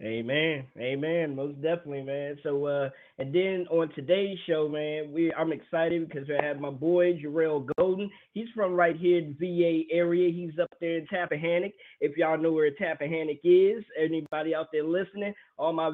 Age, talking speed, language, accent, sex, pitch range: 20-39, 180 wpm, English, American, male, 155-190 Hz